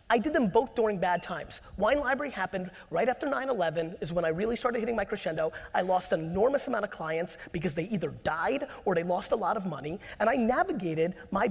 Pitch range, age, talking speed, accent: 185-255 Hz, 30-49, 225 wpm, American